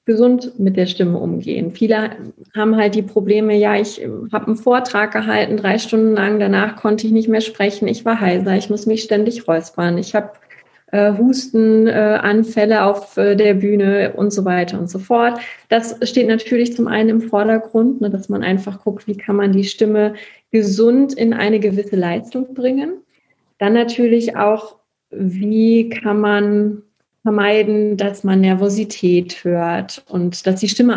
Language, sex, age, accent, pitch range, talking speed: German, female, 30-49, German, 200-225 Hz, 165 wpm